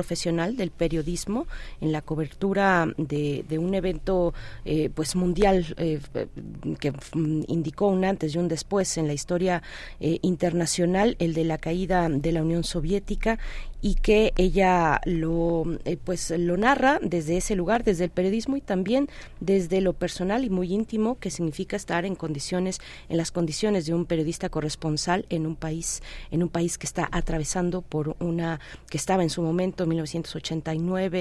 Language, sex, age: Spanish, female, 40-59